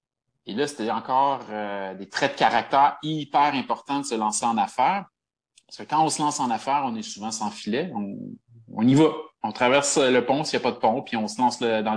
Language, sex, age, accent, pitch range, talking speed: French, male, 30-49, Canadian, 105-155 Hz, 240 wpm